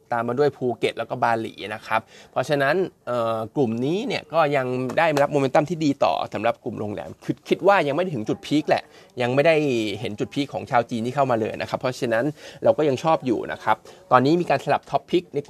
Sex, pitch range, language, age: male, 115-140 Hz, Thai, 20-39